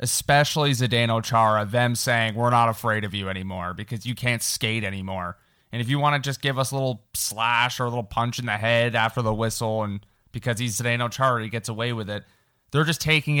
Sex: male